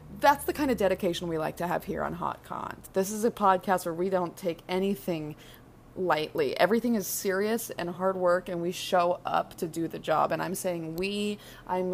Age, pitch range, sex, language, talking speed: 20-39, 165-185 Hz, female, English, 210 wpm